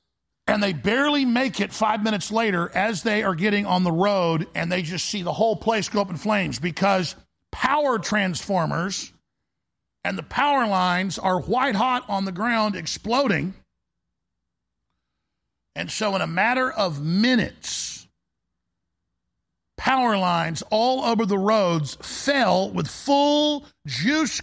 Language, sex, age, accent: English, male, 50-69, American